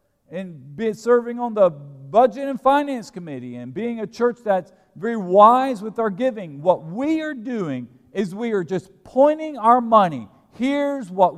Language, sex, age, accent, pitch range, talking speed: English, male, 40-59, American, 155-230 Hz, 170 wpm